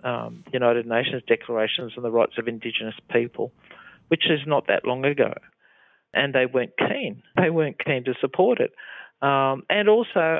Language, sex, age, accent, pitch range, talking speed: English, male, 50-69, Australian, 120-140 Hz, 165 wpm